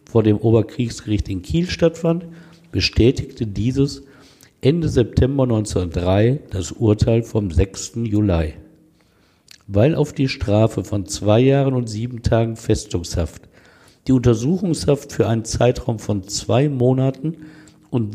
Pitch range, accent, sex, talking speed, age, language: 100-130 Hz, German, male, 120 wpm, 50-69, German